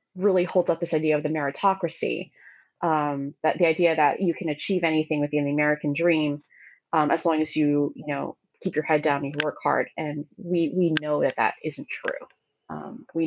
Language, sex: English, female